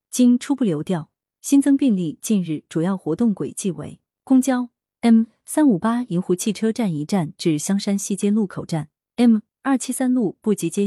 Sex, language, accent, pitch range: female, Chinese, native, 170-240 Hz